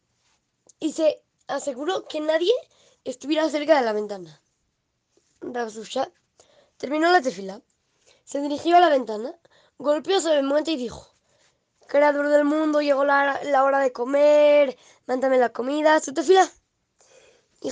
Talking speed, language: 135 wpm, Spanish